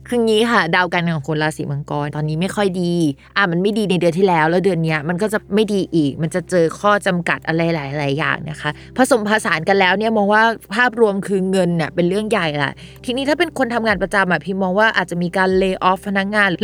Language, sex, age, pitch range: Thai, female, 20-39, 175-220 Hz